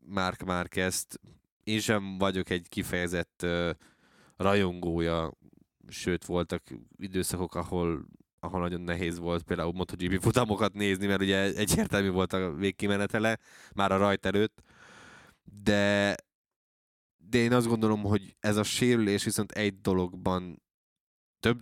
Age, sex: 20-39, male